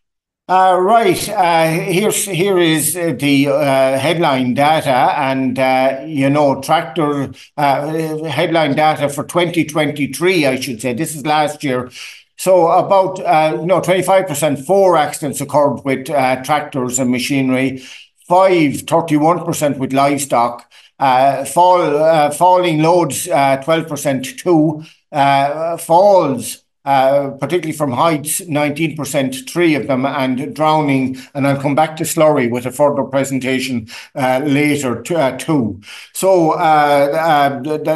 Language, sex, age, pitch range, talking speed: English, male, 60-79, 135-165 Hz, 140 wpm